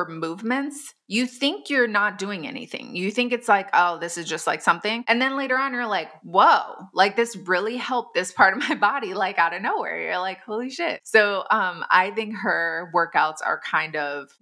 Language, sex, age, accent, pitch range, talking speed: English, female, 20-39, American, 165-220 Hz, 210 wpm